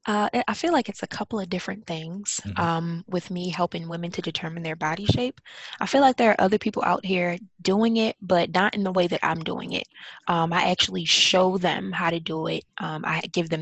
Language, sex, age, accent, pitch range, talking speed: English, female, 20-39, American, 160-190 Hz, 235 wpm